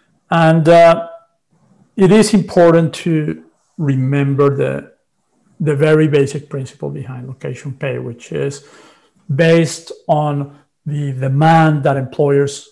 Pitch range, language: 135-160 Hz, English